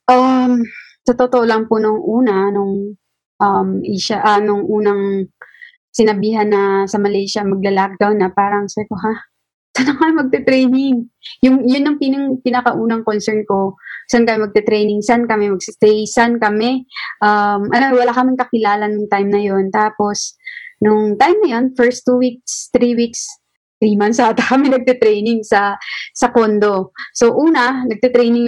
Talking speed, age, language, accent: 150 wpm, 20-39, English, Filipino